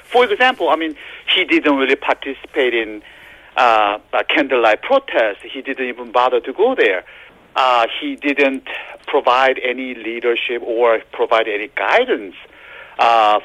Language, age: English, 50-69